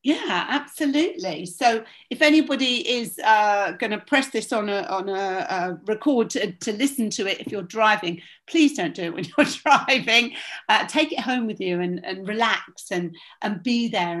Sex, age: female, 50-69